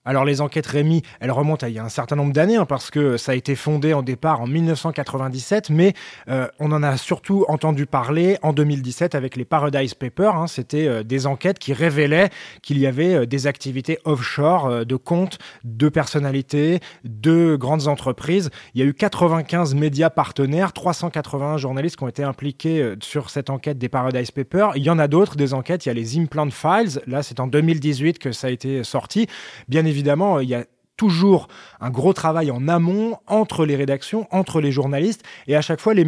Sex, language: male, French